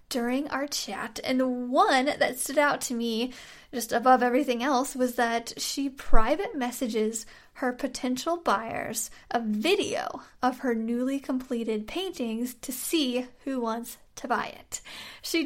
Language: English